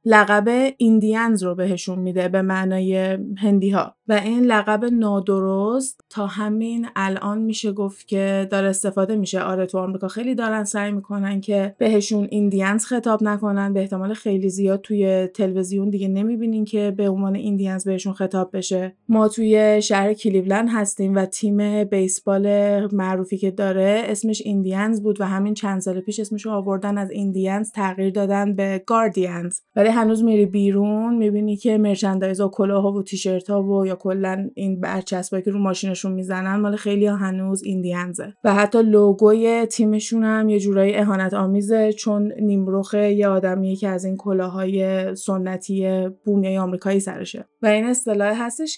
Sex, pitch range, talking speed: female, 190-210 Hz, 155 wpm